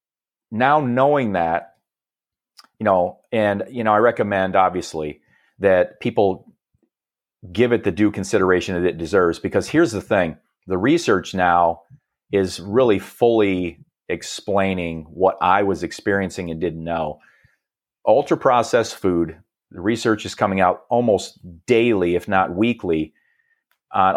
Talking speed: 130 wpm